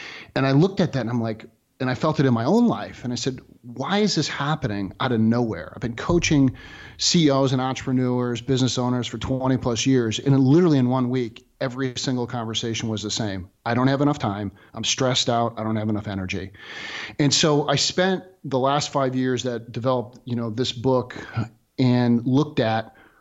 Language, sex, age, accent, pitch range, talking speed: English, male, 40-59, American, 115-135 Hz, 205 wpm